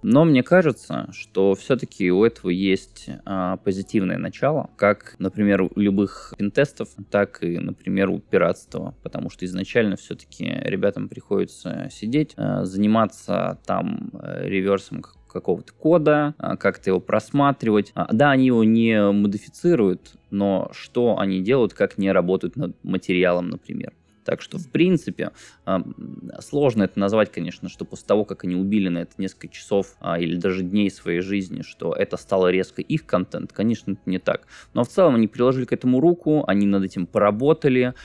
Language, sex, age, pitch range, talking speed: Russian, male, 20-39, 95-115 Hz, 150 wpm